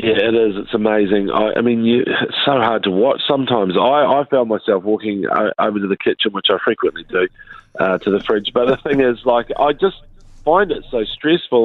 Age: 40-59